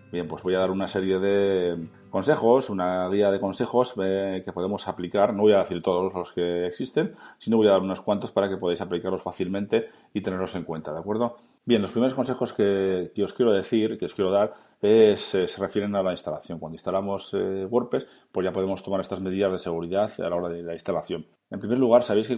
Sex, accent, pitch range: male, Spanish, 90-105 Hz